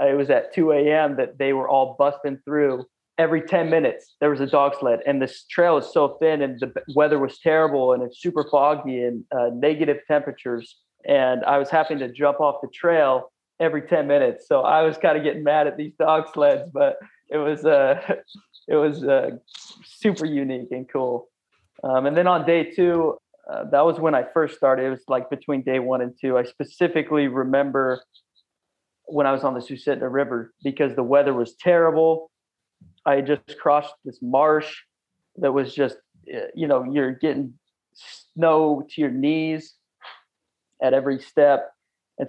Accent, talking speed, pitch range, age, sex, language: American, 180 wpm, 130-155 Hz, 30-49, male, English